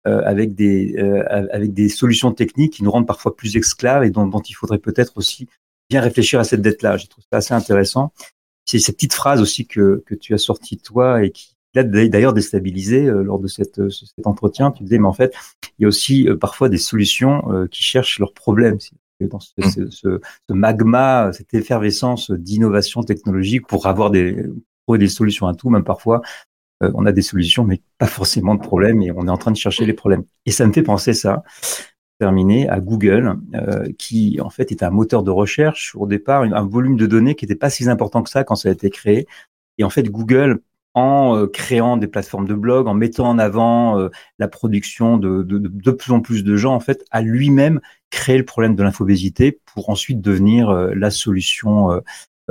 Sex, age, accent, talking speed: male, 40-59, French, 215 wpm